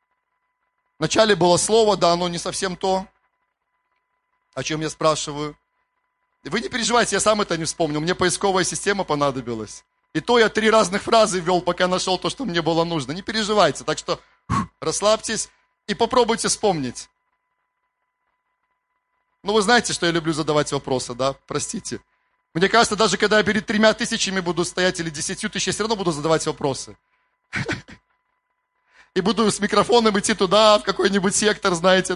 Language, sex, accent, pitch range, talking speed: Russian, male, native, 160-215 Hz, 160 wpm